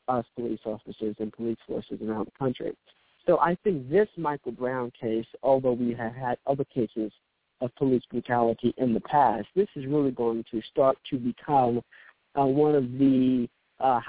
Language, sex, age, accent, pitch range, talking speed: English, male, 50-69, American, 120-145 Hz, 175 wpm